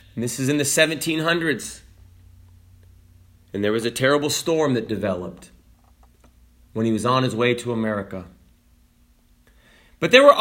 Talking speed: 145 wpm